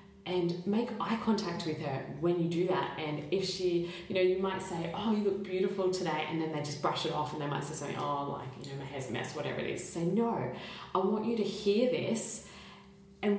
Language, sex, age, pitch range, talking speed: English, female, 20-39, 155-195 Hz, 245 wpm